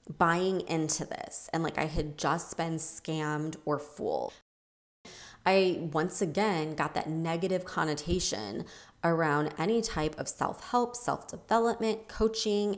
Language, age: English, 20-39